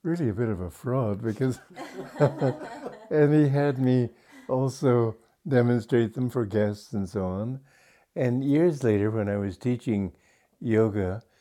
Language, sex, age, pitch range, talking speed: English, male, 60-79, 100-125 Hz, 140 wpm